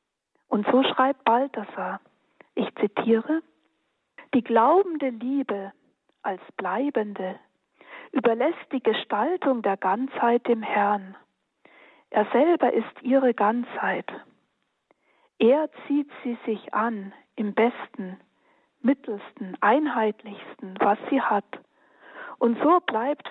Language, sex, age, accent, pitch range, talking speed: German, female, 50-69, German, 215-285 Hz, 100 wpm